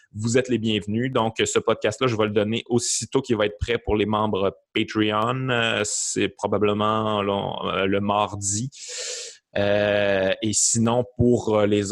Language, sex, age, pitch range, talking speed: French, male, 30-49, 100-120 Hz, 150 wpm